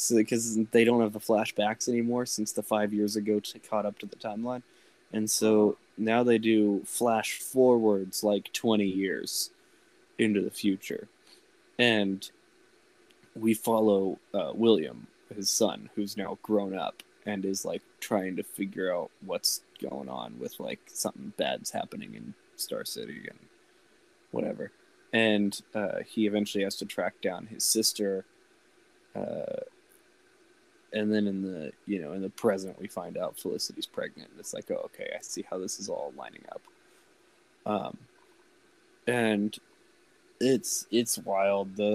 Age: 20-39